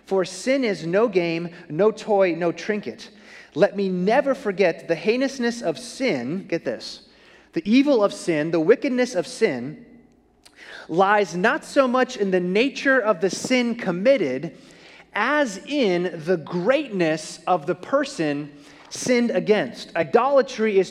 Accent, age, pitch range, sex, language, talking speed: American, 30-49, 175-230 Hz, male, English, 140 wpm